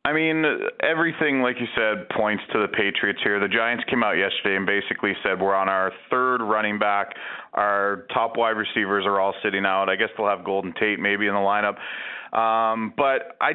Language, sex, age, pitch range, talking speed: English, male, 30-49, 105-125 Hz, 205 wpm